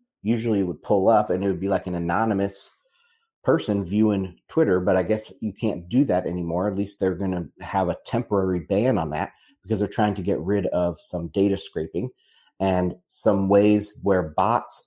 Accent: American